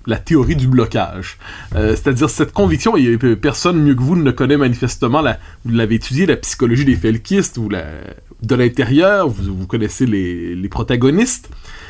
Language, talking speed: French, 170 wpm